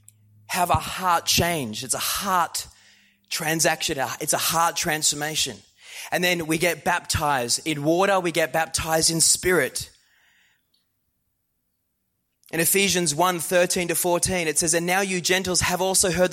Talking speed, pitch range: 145 wpm, 165-195 Hz